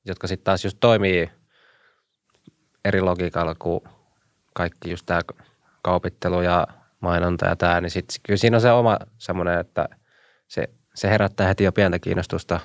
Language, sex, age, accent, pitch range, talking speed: Finnish, male, 20-39, native, 90-110 Hz, 150 wpm